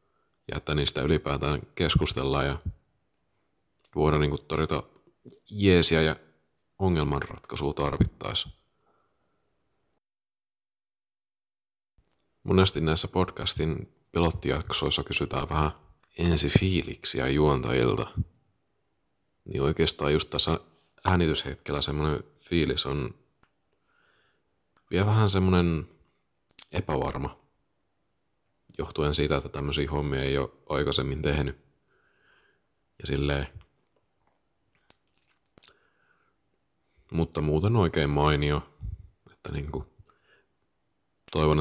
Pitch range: 75-85 Hz